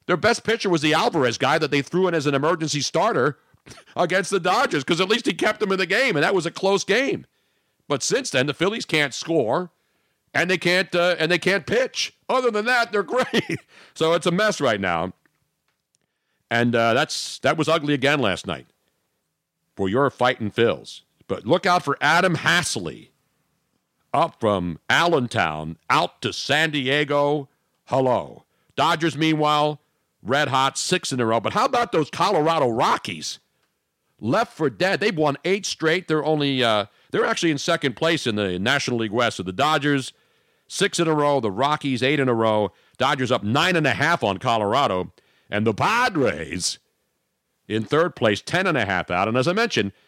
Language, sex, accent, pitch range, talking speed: English, male, American, 130-180 Hz, 185 wpm